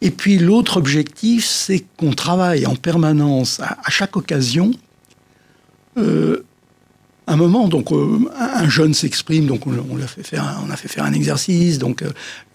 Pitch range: 140-190 Hz